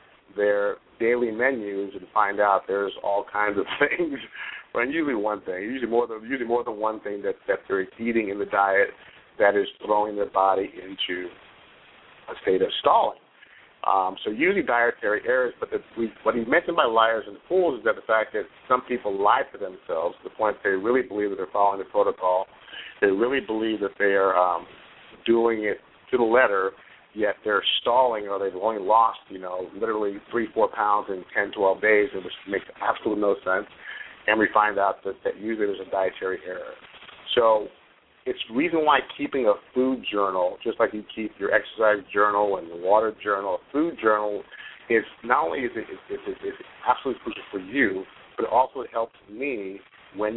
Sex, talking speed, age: male, 190 wpm, 50-69